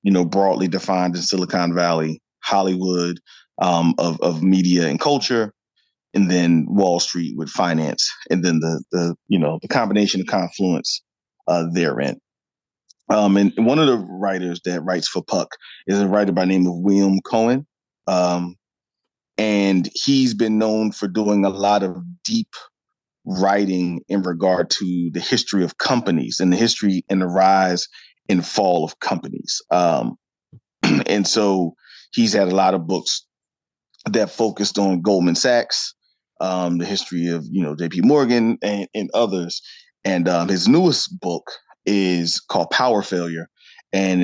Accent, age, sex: American, 30-49, male